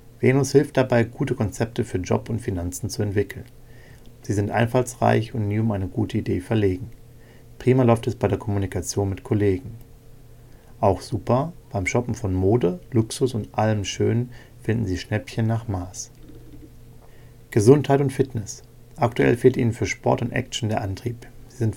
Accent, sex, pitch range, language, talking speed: German, male, 105-125 Hz, German, 160 wpm